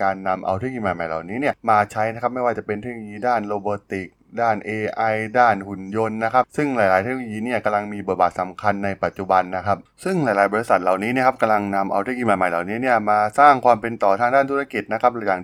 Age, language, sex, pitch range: 20-39, Thai, male, 95-115 Hz